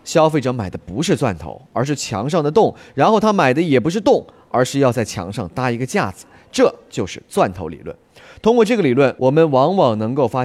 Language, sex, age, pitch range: Chinese, male, 30-49, 120-170 Hz